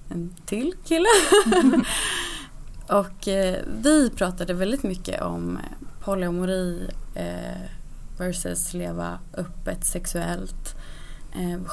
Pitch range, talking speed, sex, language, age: 170-200 Hz, 75 wpm, female, English, 20-39